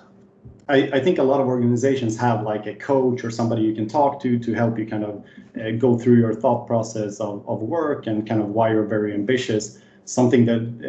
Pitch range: 110-125 Hz